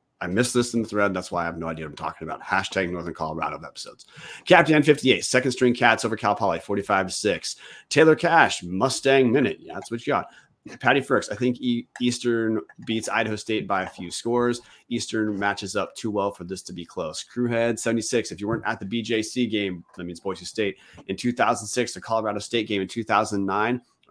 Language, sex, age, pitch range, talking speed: English, male, 30-49, 105-130 Hz, 200 wpm